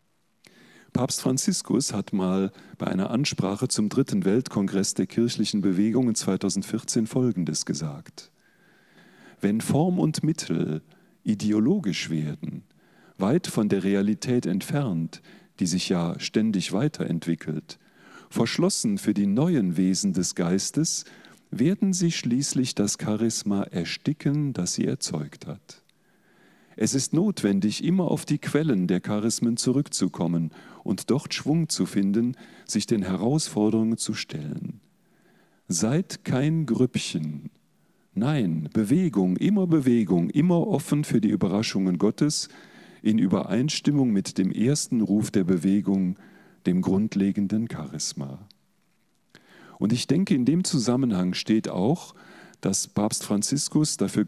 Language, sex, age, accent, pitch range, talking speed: German, male, 40-59, German, 95-150 Hz, 115 wpm